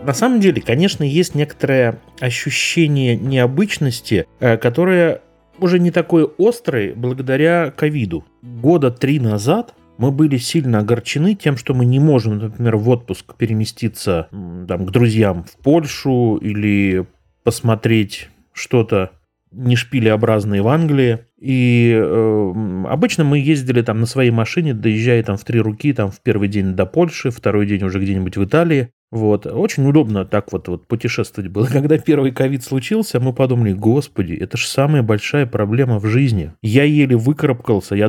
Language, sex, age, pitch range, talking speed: Russian, male, 30-49, 110-145 Hz, 145 wpm